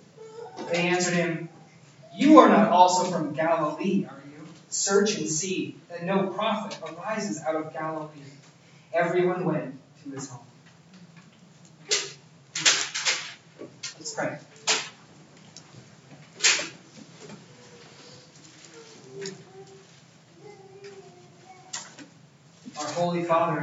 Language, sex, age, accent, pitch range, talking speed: English, male, 30-49, American, 150-175 Hz, 80 wpm